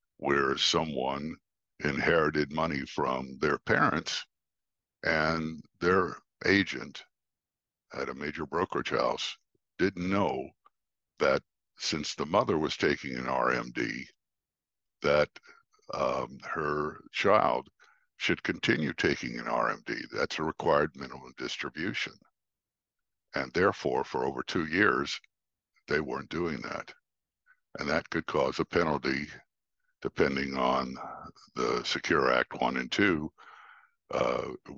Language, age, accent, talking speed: English, 60-79, American, 110 wpm